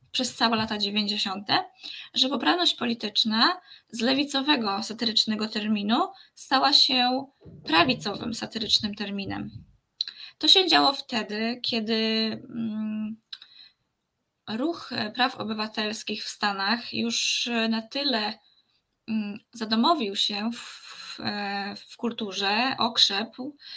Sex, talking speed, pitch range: female, 90 wpm, 220-250 Hz